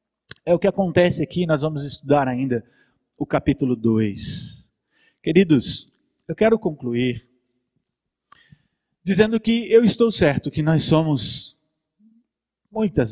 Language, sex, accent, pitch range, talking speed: Portuguese, male, Brazilian, 135-180 Hz, 115 wpm